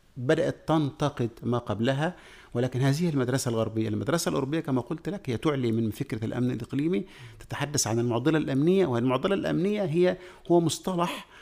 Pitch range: 115-145 Hz